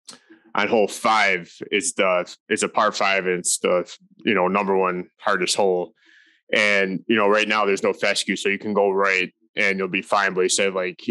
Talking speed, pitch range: 210 wpm, 95-115 Hz